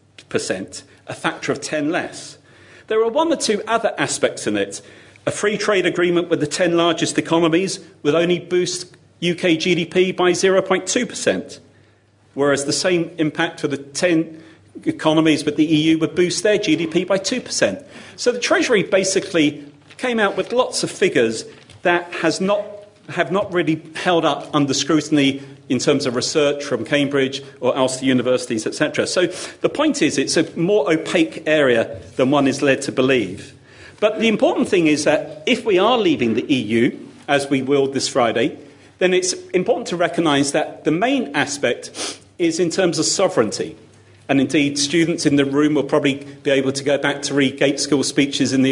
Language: English